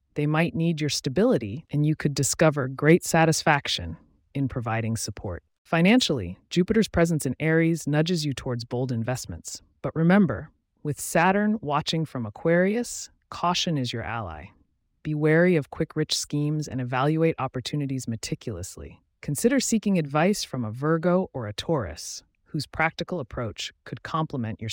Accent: American